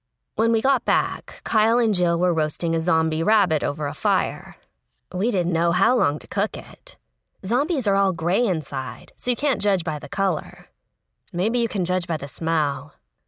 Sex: female